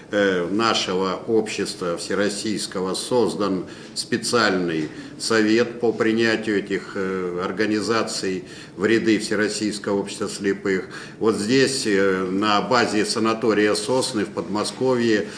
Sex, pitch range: male, 105-120 Hz